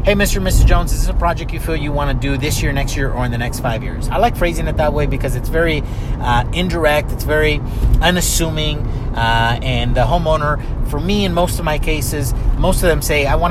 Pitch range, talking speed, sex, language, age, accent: 115-135 Hz, 250 wpm, male, English, 30-49, American